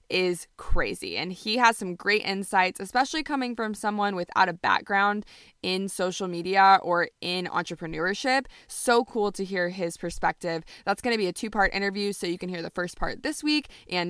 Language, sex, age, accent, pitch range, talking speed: English, female, 20-39, American, 180-220 Hz, 185 wpm